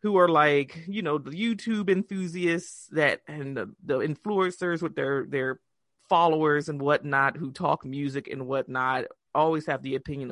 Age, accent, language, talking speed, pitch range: 30-49, American, English, 165 wpm, 140-205 Hz